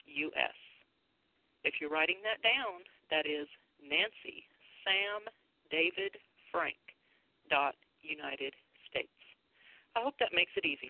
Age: 40-59